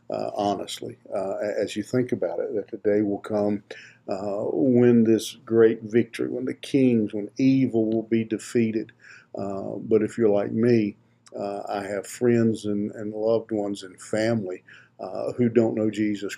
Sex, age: male, 50-69